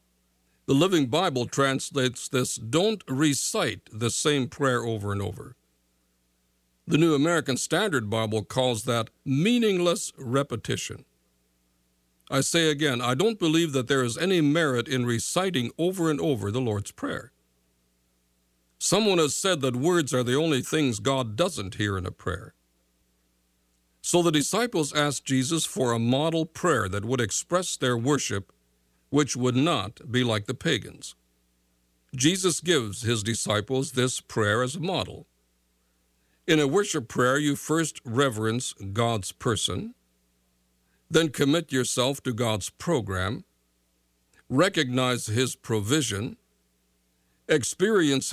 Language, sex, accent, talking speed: English, male, American, 130 wpm